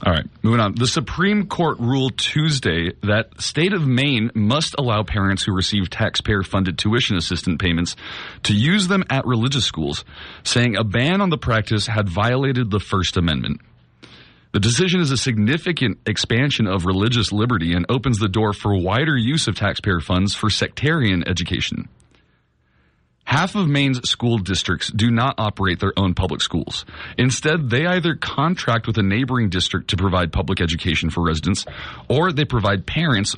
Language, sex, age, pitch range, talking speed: English, male, 30-49, 95-125 Hz, 165 wpm